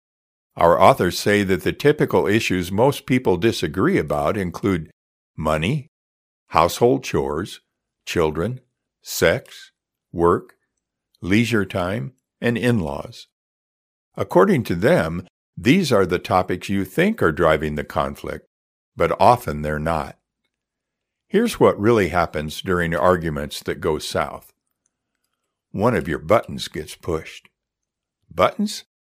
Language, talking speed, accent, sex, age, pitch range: English, 115 wpm, American, male, 60-79, 80-115 Hz